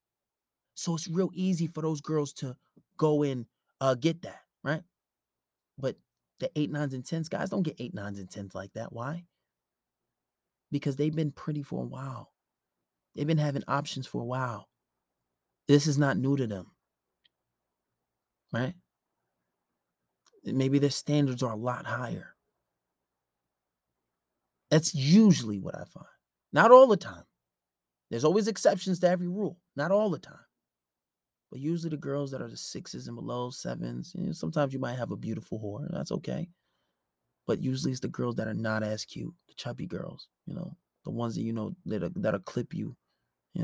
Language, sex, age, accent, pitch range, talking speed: English, male, 30-49, American, 105-160 Hz, 170 wpm